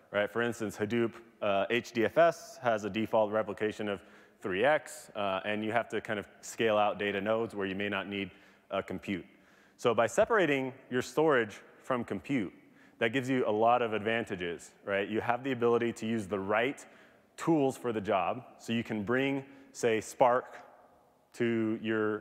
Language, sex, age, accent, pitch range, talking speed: English, male, 30-49, American, 100-120 Hz, 175 wpm